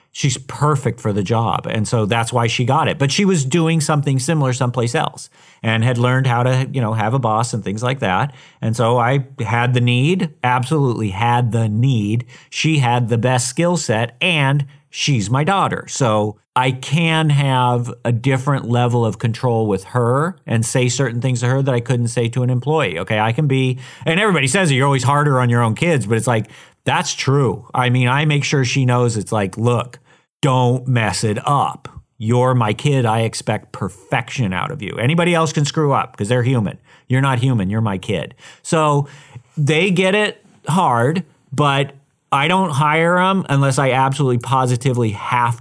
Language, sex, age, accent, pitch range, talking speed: English, male, 40-59, American, 115-145 Hz, 195 wpm